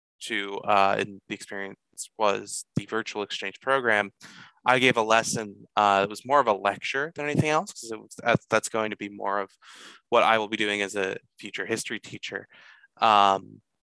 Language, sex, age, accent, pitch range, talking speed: English, male, 20-39, American, 105-125 Hz, 190 wpm